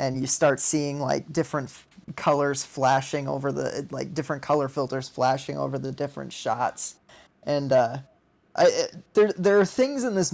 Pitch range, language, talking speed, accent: 140-165 Hz, English, 165 wpm, American